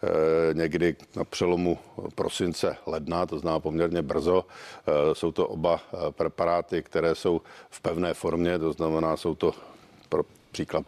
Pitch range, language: 80-85 Hz, Czech